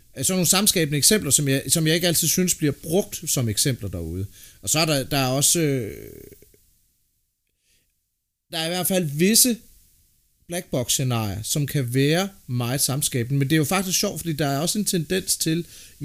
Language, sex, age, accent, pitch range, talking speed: Danish, male, 30-49, native, 110-155 Hz, 195 wpm